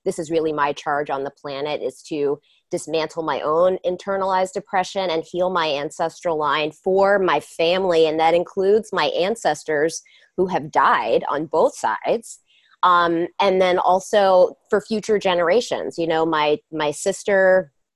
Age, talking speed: 20-39, 155 wpm